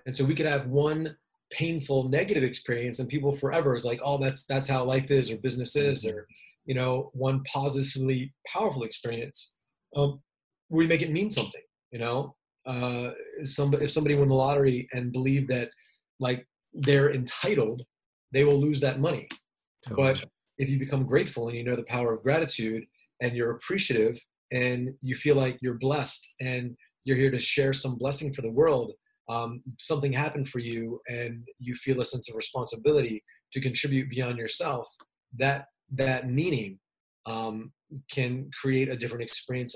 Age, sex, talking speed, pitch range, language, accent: 30-49, male, 170 wpm, 125-140 Hz, English, American